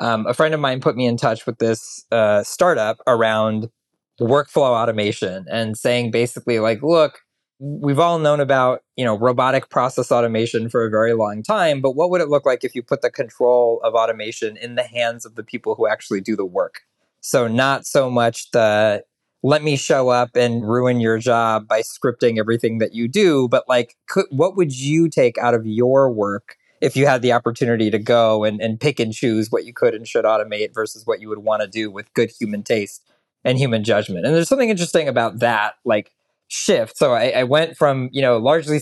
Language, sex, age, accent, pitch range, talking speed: English, male, 20-39, American, 115-135 Hz, 210 wpm